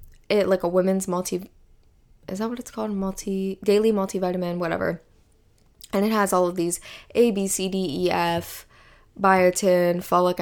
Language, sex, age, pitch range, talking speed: English, female, 10-29, 175-210 Hz, 160 wpm